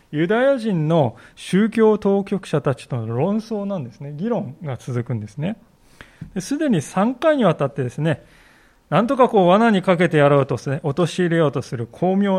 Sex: male